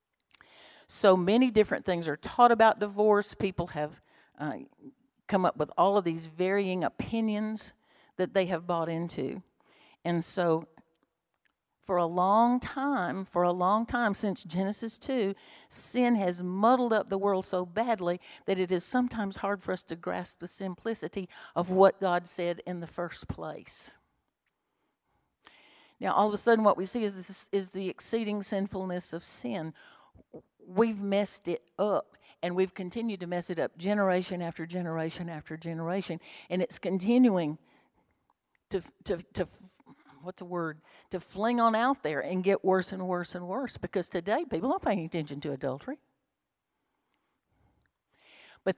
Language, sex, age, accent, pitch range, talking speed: English, female, 50-69, American, 175-220 Hz, 155 wpm